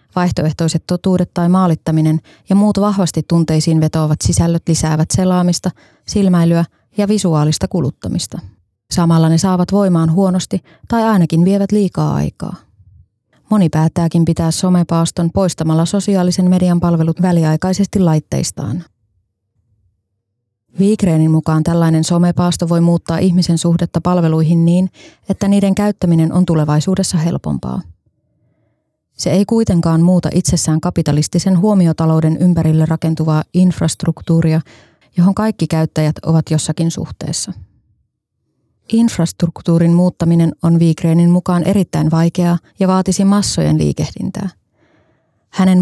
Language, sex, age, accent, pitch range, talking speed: Finnish, female, 20-39, native, 160-180 Hz, 105 wpm